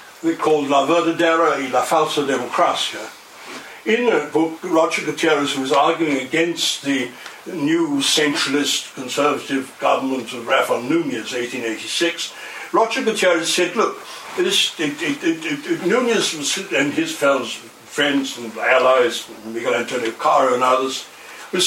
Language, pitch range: English, 140-180 Hz